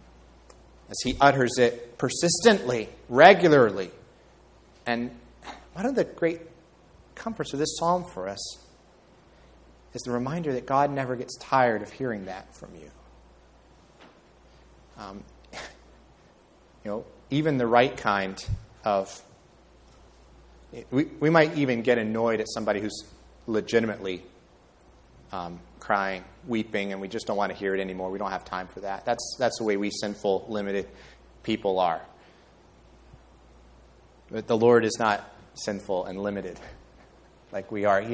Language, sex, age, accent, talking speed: English, male, 30-49, American, 135 wpm